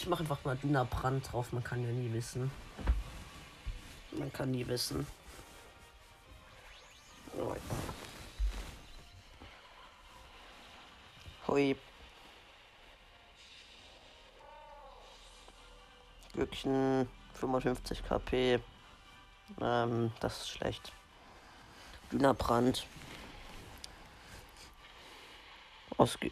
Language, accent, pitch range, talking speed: German, German, 95-125 Hz, 55 wpm